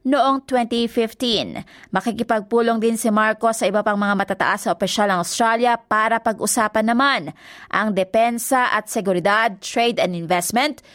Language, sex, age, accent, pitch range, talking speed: Filipino, female, 20-39, native, 210-250 Hz, 135 wpm